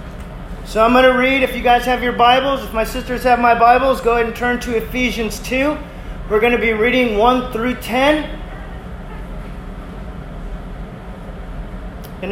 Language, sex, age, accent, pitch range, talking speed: English, male, 30-49, American, 235-275 Hz, 160 wpm